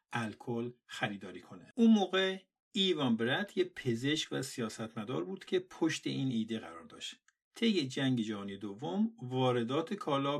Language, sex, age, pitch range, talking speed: Persian, male, 50-69, 120-185 Hz, 140 wpm